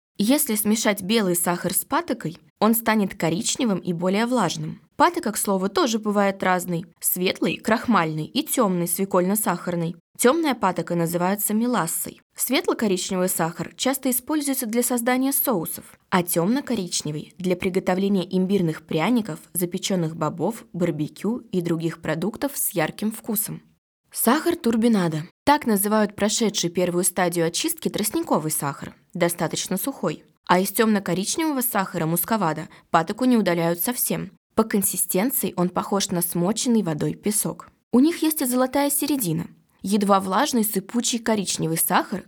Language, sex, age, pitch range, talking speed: Russian, female, 20-39, 175-235 Hz, 130 wpm